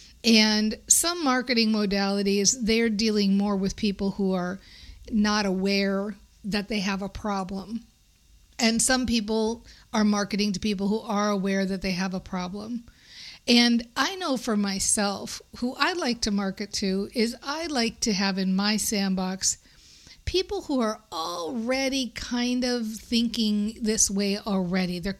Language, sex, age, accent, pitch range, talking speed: English, female, 50-69, American, 200-255 Hz, 150 wpm